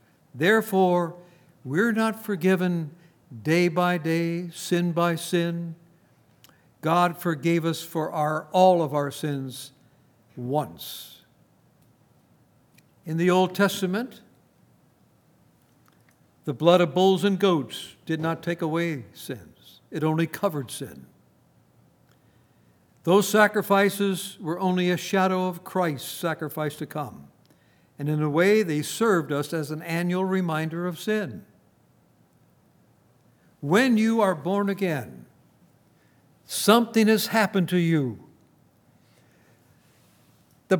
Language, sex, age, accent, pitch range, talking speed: English, male, 60-79, American, 160-210 Hz, 105 wpm